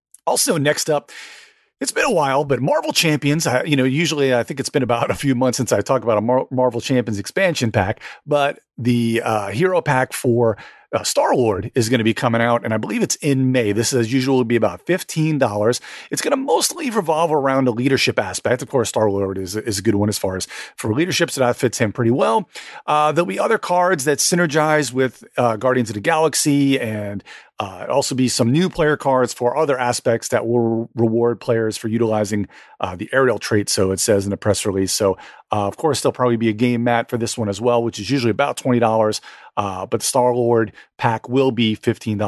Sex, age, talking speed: male, 40-59, 220 wpm